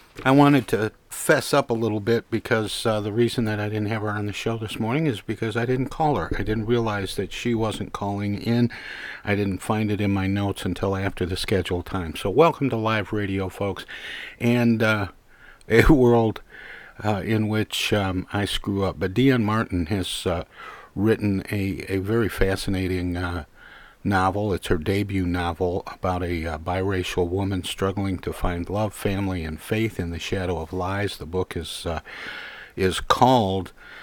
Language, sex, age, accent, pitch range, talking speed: English, male, 50-69, American, 90-110 Hz, 185 wpm